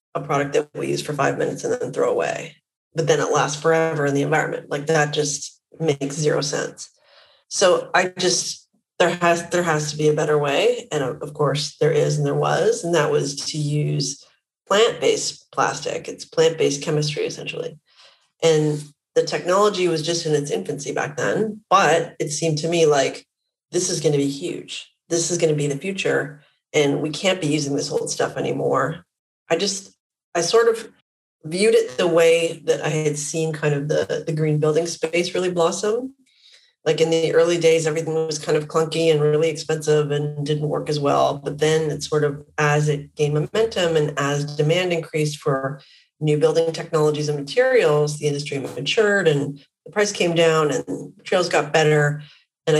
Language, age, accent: English, 30-49, American